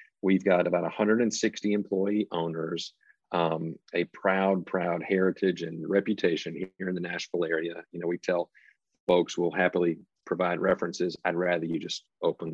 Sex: male